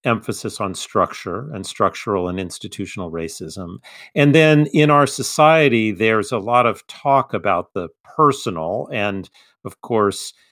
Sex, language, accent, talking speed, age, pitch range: male, English, American, 135 wpm, 50-69, 100-135 Hz